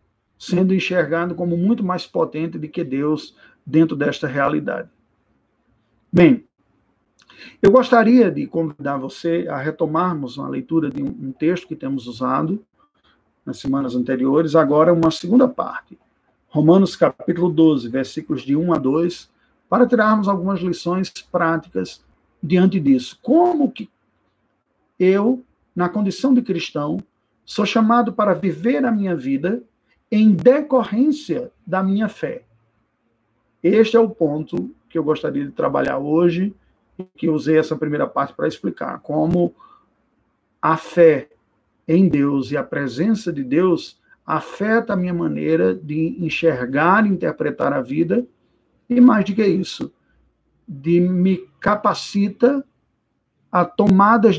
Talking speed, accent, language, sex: 130 wpm, Brazilian, Portuguese, male